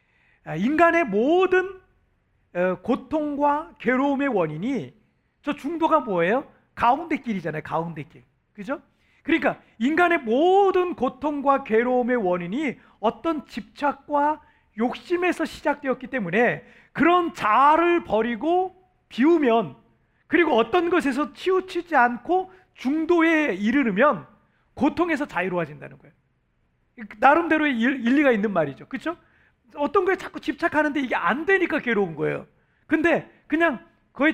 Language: Korean